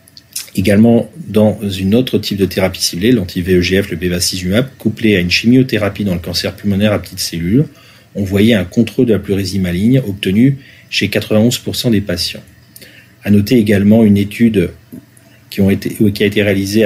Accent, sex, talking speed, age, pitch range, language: French, male, 165 wpm, 40-59, 95-115 Hz, French